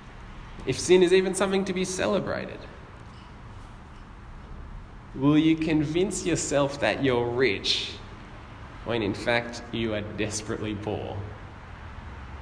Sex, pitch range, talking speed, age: male, 105-155 Hz, 105 wpm, 20-39